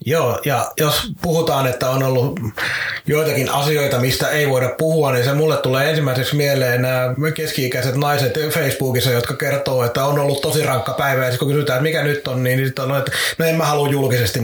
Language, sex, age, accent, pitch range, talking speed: Finnish, male, 30-49, native, 125-160 Hz, 200 wpm